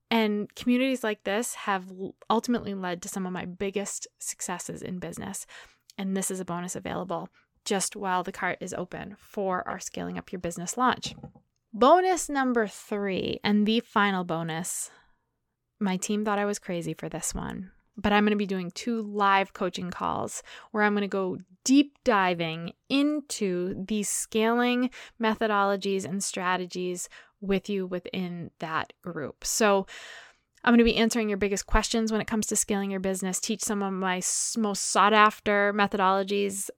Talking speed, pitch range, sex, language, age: 165 wpm, 185-220 Hz, female, English, 20-39